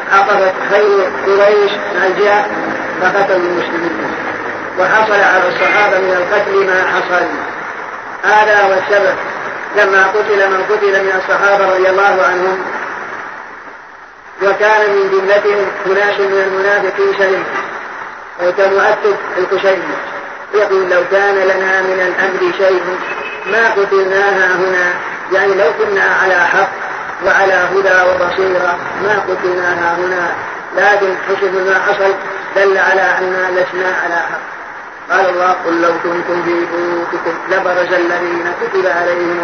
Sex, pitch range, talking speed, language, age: female, 185-200 Hz, 115 wpm, Arabic, 30-49